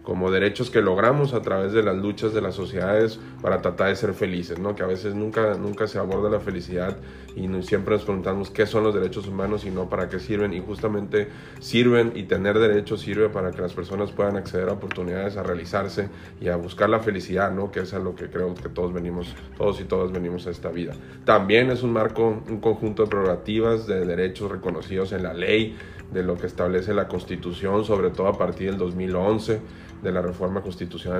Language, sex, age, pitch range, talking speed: Spanish, male, 30-49, 90-110 Hz, 210 wpm